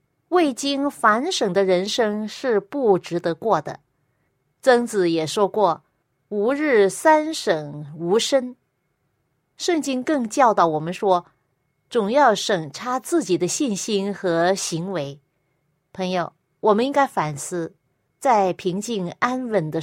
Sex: female